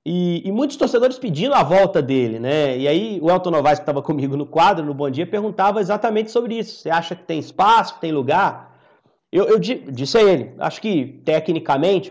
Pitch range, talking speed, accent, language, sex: 150-195 Hz, 215 wpm, Brazilian, Portuguese, male